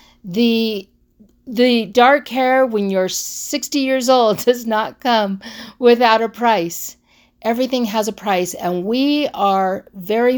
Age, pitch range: 50-69, 160-220 Hz